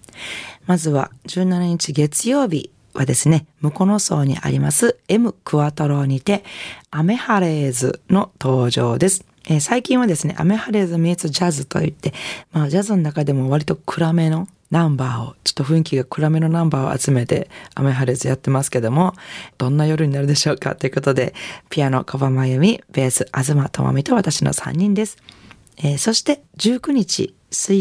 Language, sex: Japanese, female